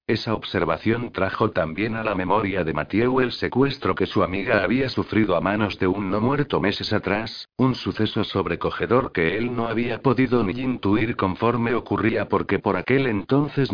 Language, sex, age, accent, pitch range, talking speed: Spanish, male, 60-79, Spanish, 95-115 Hz, 175 wpm